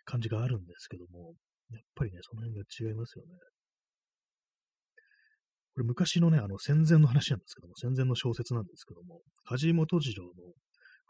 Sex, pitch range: male, 100-135 Hz